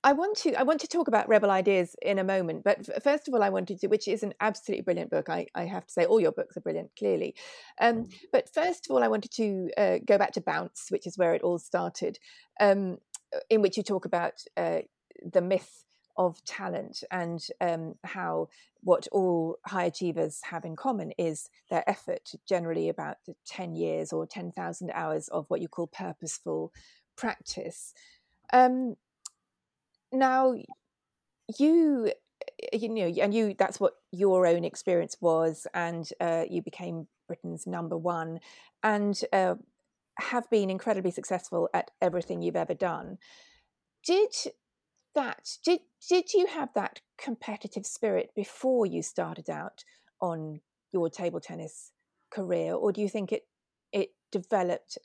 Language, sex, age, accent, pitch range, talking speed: English, female, 40-59, British, 170-260 Hz, 165 wpm